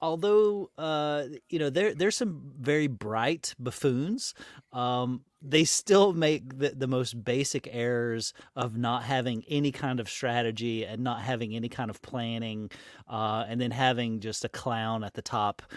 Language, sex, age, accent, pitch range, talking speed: English, male, 30-49, American, 110-140 Hz, 165 wpm